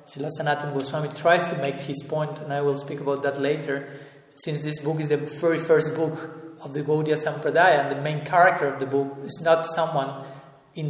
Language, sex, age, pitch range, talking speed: English, male, 40-59, 145-170 Hz, 210 wpm